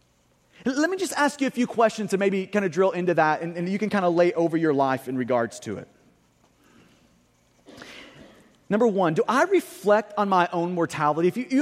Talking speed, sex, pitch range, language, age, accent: 210 wpm, male, 170-235 Hz, English, 30-49, American